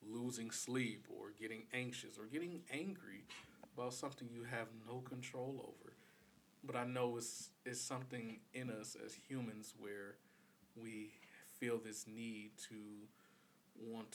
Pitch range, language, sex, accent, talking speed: 105-120 Hz, English, male, American, 135 wpm